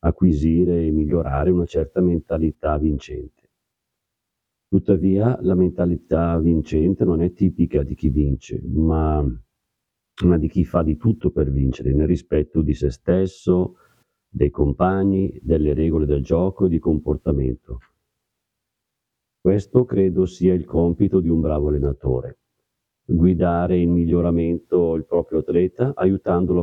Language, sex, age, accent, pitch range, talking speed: Italian, male, 50-69, native, 75-90 Hz, 125 wpm